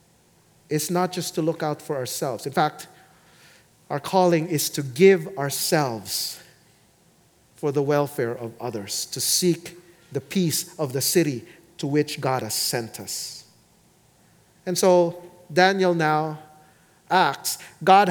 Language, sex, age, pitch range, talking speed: English, male, 40-59, 140-180 Hz, 135 wpm